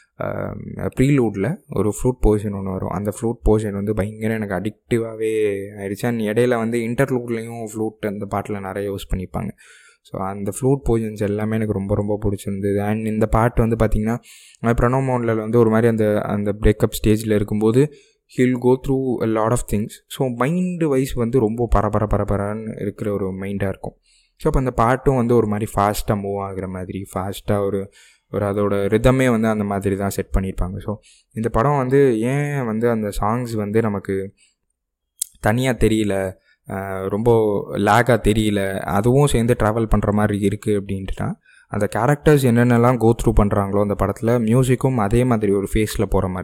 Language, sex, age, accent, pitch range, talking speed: Tamil, male, 20-39, native, 100-120 Hz, 160 wpm